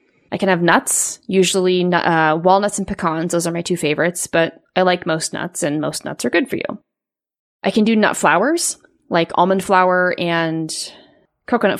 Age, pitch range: 20-39, 170-205 Hz